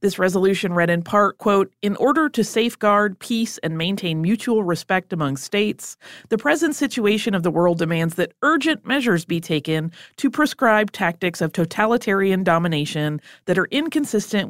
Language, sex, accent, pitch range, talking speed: English, female, American, 170-230 Hz, 155 wpm